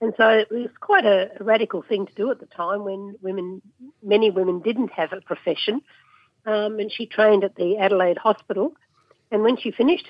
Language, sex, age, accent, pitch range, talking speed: English, female, 60-79, Australian, 190-220 Hz, 195 wpm